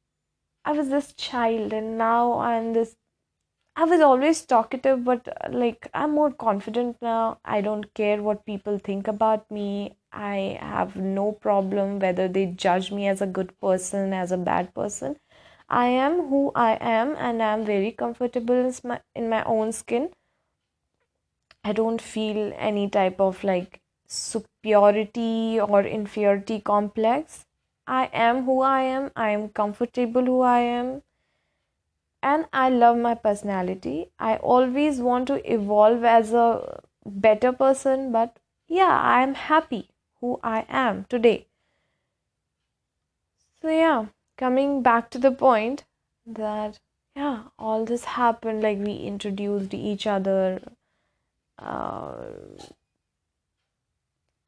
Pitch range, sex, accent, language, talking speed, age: 205-255 Hz, female, Indian, English, 135 wpm, 20-39